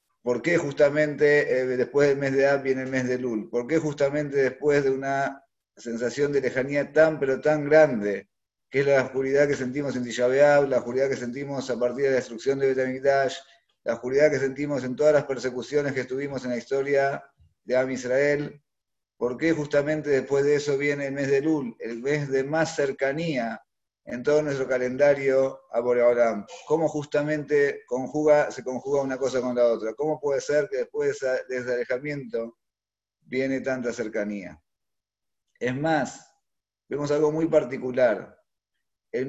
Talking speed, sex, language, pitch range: 170 wpm, male, Spanish, 125-145 Hz